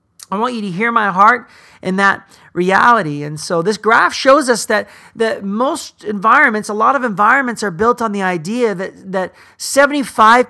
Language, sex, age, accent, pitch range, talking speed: English, male, 40-59, American, 185-235 Hz, 185 wpm